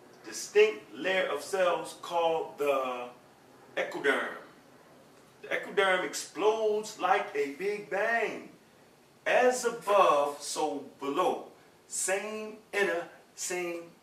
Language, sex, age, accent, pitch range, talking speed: English, male, 30-49, American, 170-235 Hz, 90 wpm